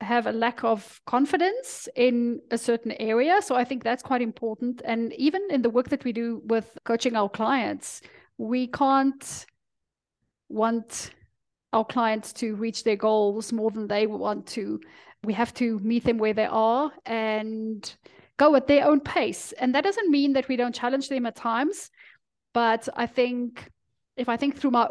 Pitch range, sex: 230-270 Hz, female